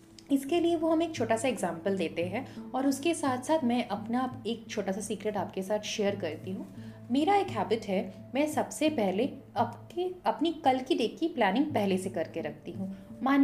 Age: 30-49